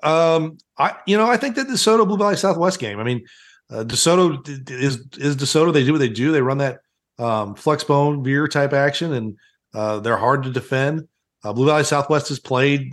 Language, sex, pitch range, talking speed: English, male, 125-155 Hz, 220 wpm